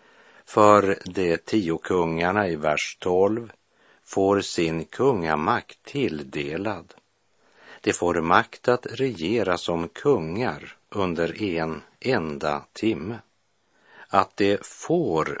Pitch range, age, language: 80-105 Hz, 60-79, Swedish